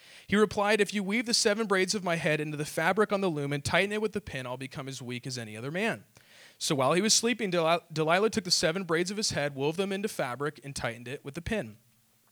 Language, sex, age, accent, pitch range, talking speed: English, male, 40-59, American, 145-210 Hz, 265 wpm